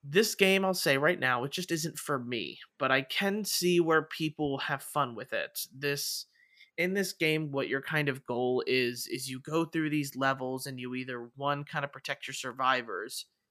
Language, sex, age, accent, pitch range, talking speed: English, male, 30-49, American, 125-150 Hz, 205 wpm